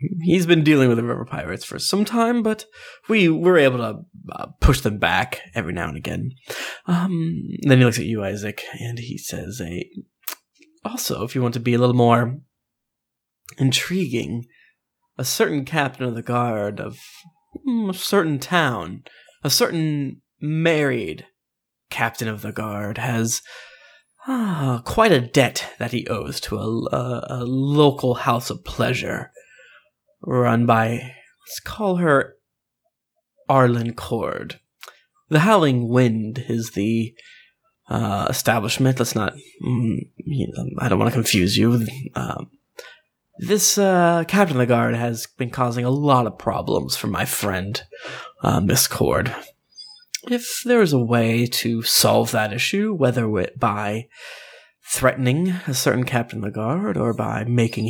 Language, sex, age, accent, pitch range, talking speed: English, male, 20-39, American, 115-180 Hz, 145 wpm